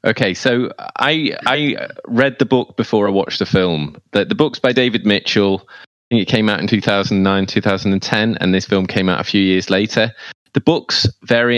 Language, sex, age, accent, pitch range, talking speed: English, male, 20-39, British, 95-120 Hz, 195 wpm